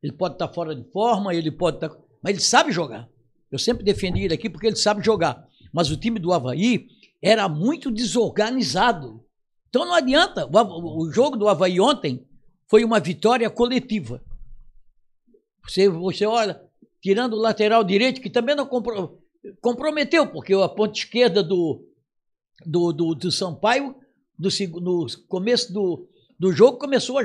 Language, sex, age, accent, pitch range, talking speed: Portuguese, male, 60-79, Brazilian, 175-240 Hz, 165 wpm